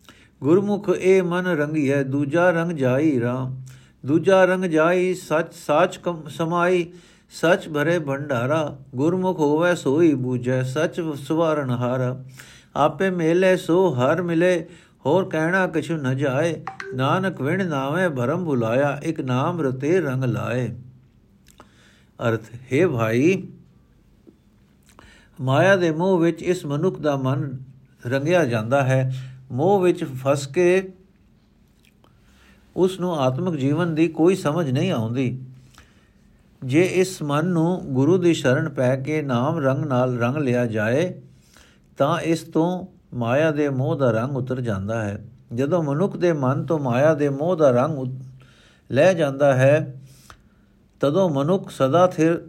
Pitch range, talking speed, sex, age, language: 130-175 Hz, 130 wpm, male, 60-79, Punjabi